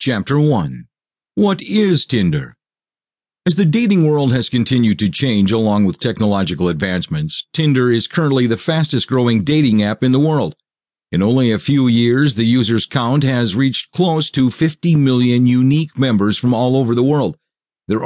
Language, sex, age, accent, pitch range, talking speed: English, male, 50-69, American, 110-140 Hz, 165 wpm